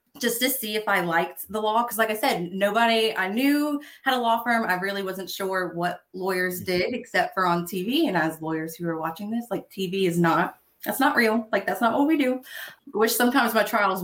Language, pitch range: English, 180-230 Hz